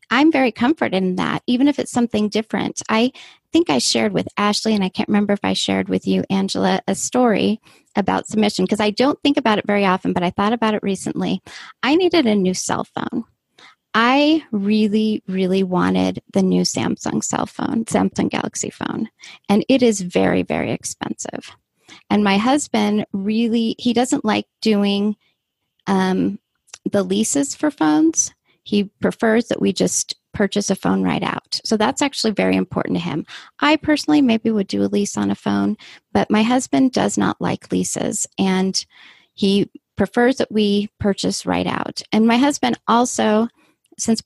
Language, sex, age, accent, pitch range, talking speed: English, female, 30-49, American, 185-255 Hz, 175 wpm